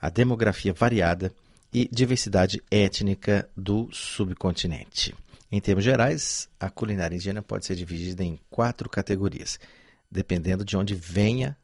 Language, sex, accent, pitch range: Chinese, male, Brazilian, 90-115 Hz